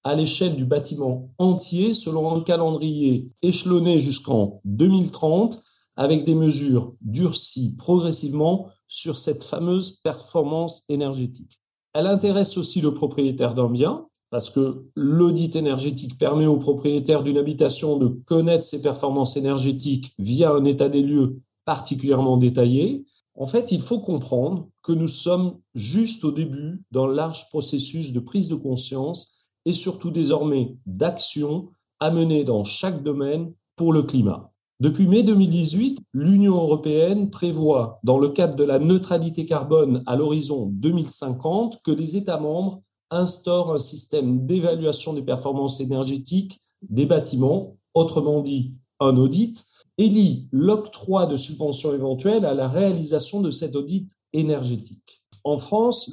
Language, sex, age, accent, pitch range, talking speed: French, male, 40-59, French, 135-175 Hz, 135 wpm